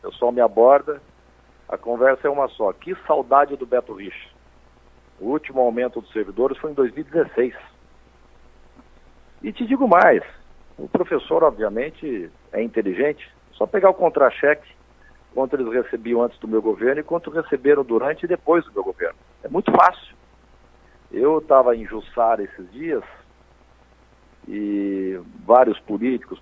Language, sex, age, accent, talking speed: Portuguese, male, 50-69, Brazilian, 145 wpm